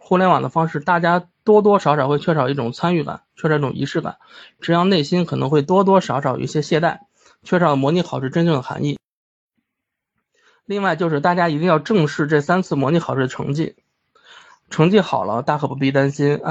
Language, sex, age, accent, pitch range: Chinese, male, 20-39, native, 140-180 Hz